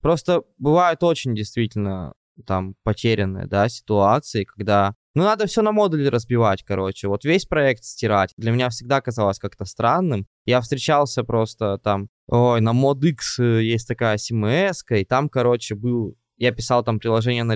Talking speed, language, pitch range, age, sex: 155 wpm, Russian, 110-140 Hz, 20-39, male